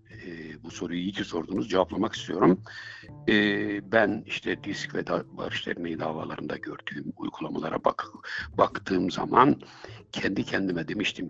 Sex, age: male, 60-79